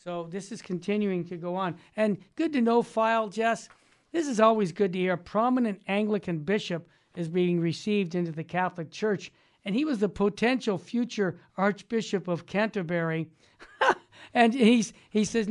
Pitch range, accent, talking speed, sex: 175-210 Hz, American, 165 wpm, male